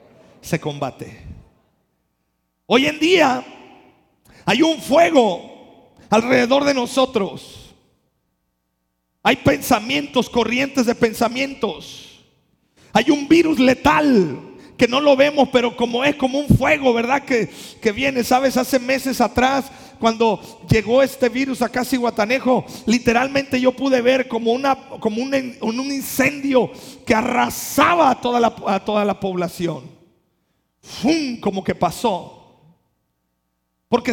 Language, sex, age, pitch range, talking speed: Spanish, male, 40-59, 230-275 Hz, 115 wpm